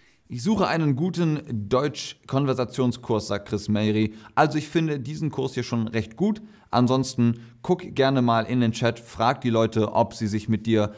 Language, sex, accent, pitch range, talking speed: German, male, German, 105-140 Hz, 175 wpm